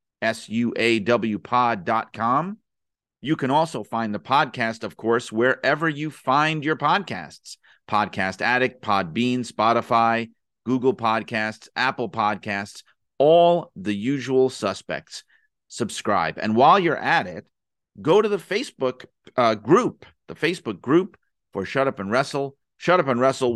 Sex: male